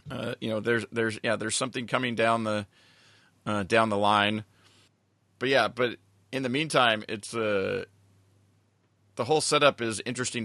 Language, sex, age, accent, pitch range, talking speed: English, male, 30-49, American, 105-140 Hz, 160 wpm